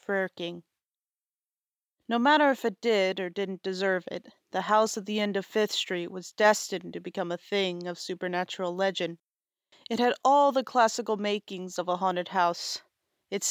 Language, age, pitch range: English, 30-49, 190-230 Hz